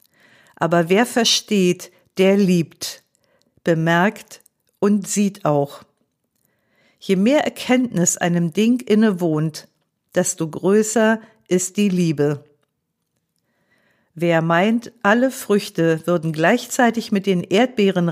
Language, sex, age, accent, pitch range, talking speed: German, female, 50-69, German, 165-205 Hz, 100 wpm